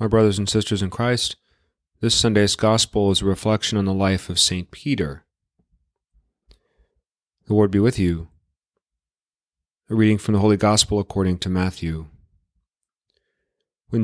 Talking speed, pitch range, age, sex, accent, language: 140 wpm, 95-115 Hz, 30-49, male, American, English